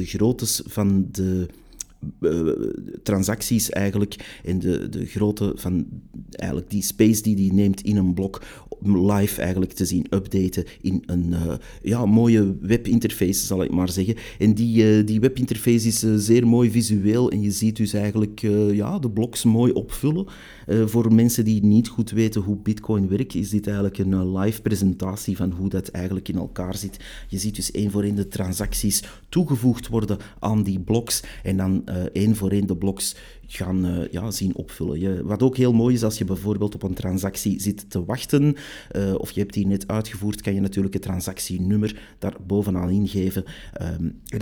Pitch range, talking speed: 95-110 Hz, 180 wpm